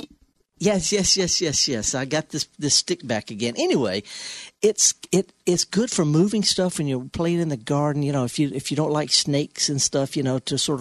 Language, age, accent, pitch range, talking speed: English, 50-69, American, 120-165 Hz, 230 wpm